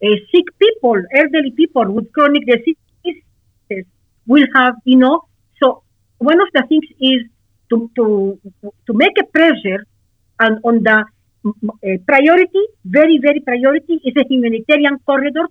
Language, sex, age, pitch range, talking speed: English, female, 50-69, 230-300 Hz, 135 wpm